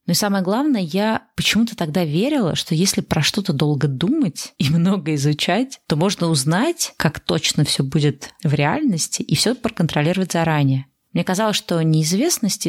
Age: 20-39